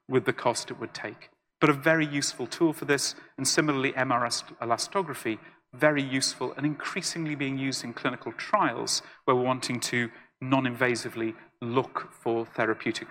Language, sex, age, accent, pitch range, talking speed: English, male, 40-59, British, 130-170 Hz, 155 wpm